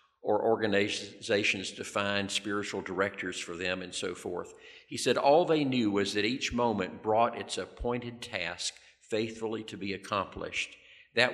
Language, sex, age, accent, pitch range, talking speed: English, male, 50-69, American, 100-120 Hz, 155 wpm